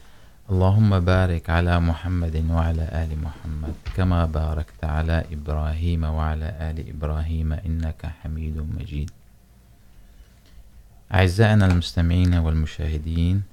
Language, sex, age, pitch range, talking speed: Urdu, male, 30-49, 80-90 Hz, 90 wpm